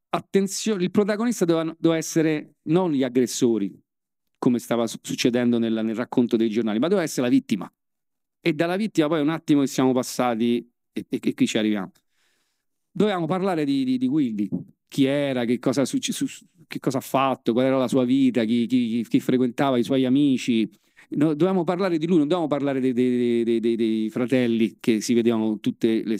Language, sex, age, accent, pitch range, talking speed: Italian, male, 40-59, native, 115-160 Hz, 190 wpm